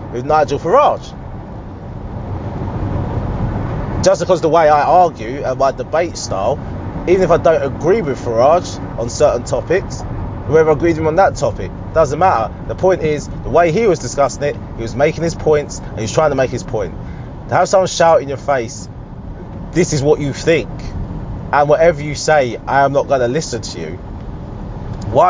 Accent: British